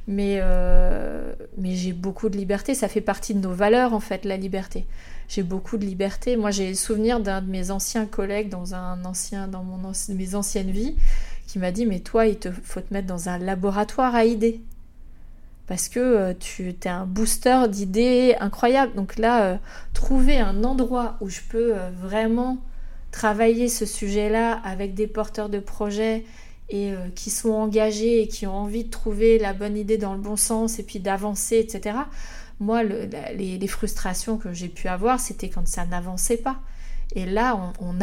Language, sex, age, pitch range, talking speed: French, female, 30-49, 190-230 Hz, 195 wpm